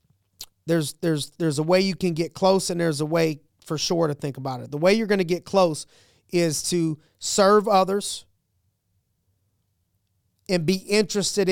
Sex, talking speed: male, 170 wpm